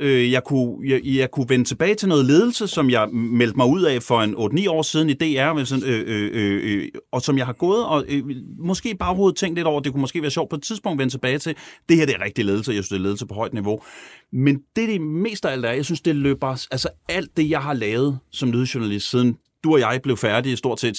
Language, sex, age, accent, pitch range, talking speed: Danish, male, 30-49, native, 115-155 Hz, 270 wpm